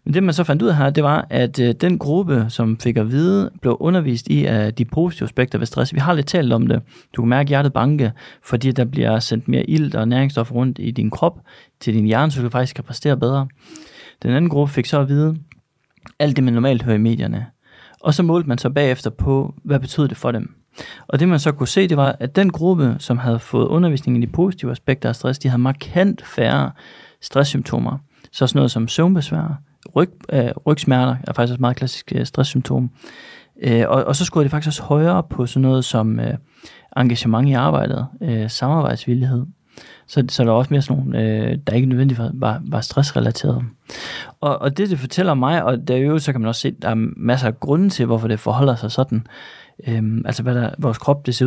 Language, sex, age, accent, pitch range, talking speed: Danish, male, 30-49, native, 120-150 Hz, 225 wpm